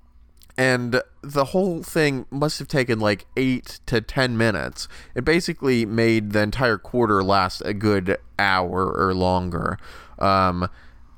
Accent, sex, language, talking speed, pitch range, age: American, male, English, 135 wpm, 90-115 Hz, 20-39